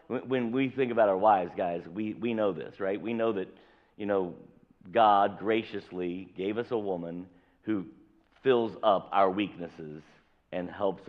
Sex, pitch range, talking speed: male, 110-150 Hz, 160 wpm